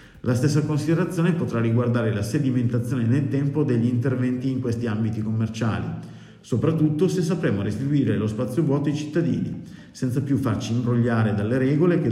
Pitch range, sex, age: 110-140 Hz, male, 50-69